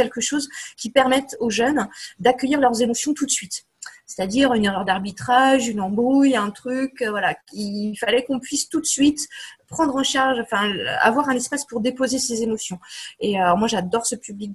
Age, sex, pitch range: 20-39, female, 210-260 Hz